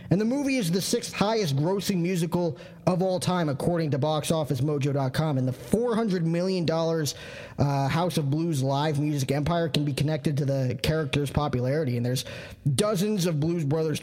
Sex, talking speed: male, 165 wpm